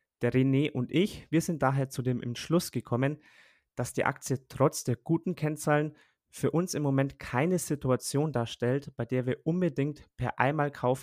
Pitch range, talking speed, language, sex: 120-140 Hz, 170 wpm, German, male